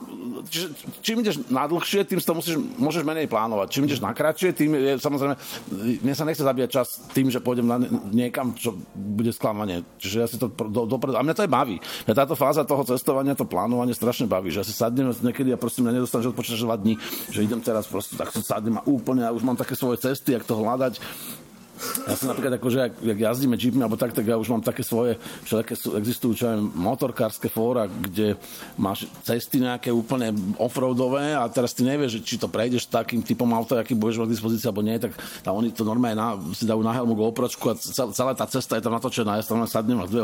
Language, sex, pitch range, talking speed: Slovak, male, 115-130 Hz, 215 wpm